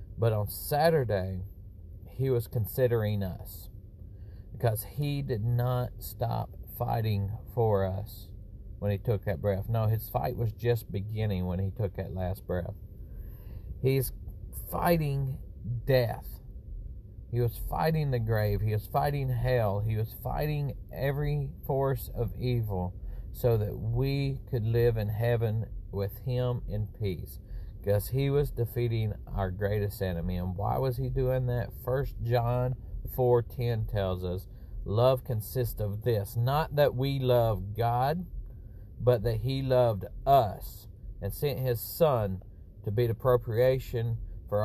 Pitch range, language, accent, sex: 100-125 Hz, English, American, male